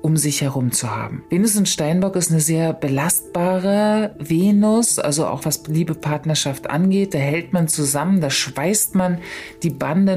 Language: German